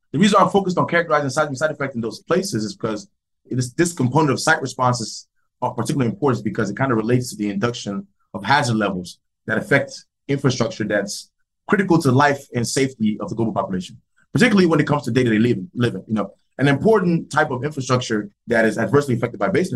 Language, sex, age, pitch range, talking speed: English, male, 20-39, 110-150 Hz, 210 wpm